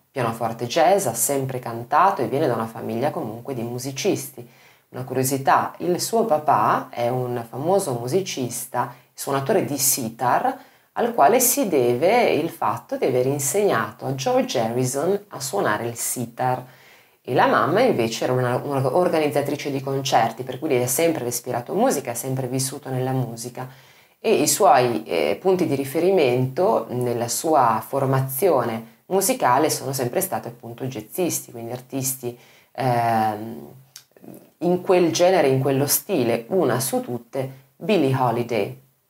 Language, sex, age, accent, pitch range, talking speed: Italian, female, 30-49, native, 120-150 Hz, 140 wpm